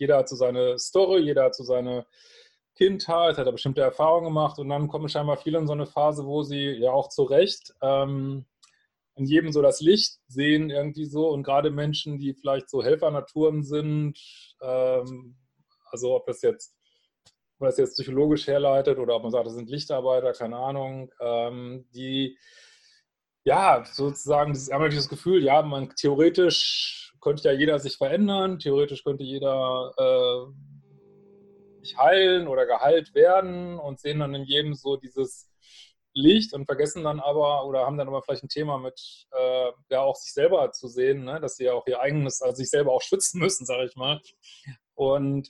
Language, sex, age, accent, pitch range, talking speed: German, male, 30-49, German, 135-175 Hz, 180 wpm